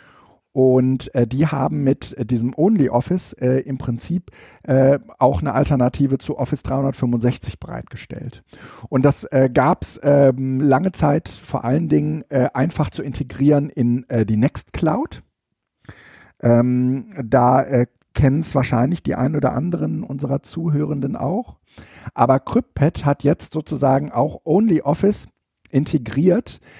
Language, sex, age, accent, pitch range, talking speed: German, male, 50-69, German, 125-145 Hz, 125 wpm